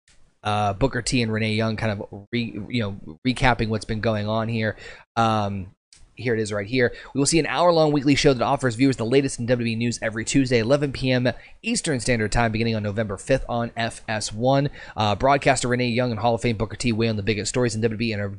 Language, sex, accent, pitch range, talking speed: English, male, American, 115-140 Hz, 230 wpm